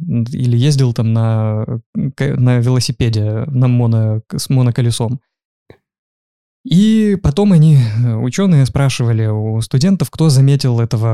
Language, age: Russian, 20-39